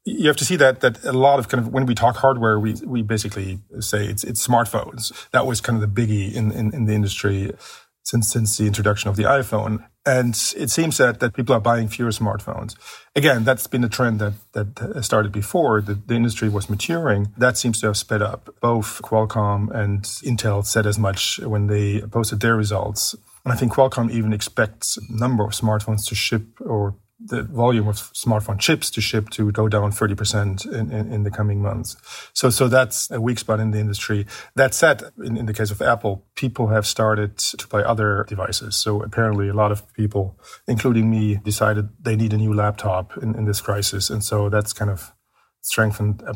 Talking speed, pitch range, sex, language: 205 wpm, 105-115 Hz, male, English